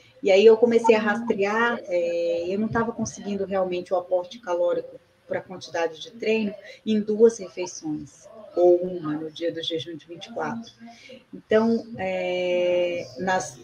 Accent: Brazilian